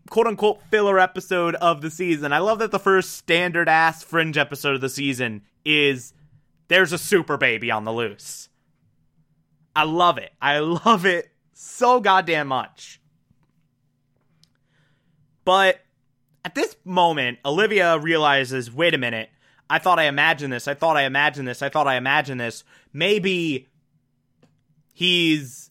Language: English